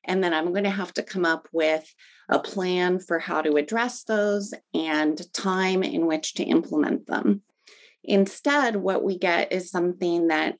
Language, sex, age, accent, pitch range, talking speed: English, female, 30-49, American, 165-215 Hz, 170 wpm